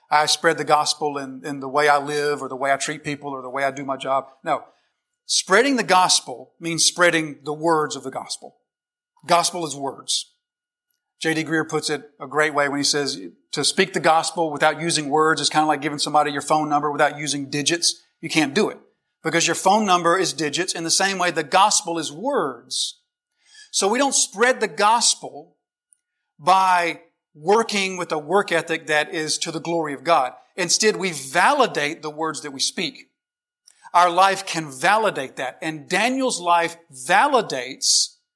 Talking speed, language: 190 wpm, English